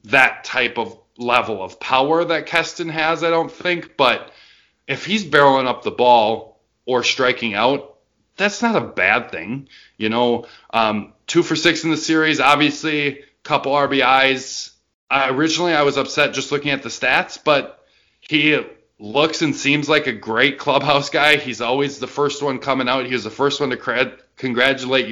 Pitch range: 125-150 Hz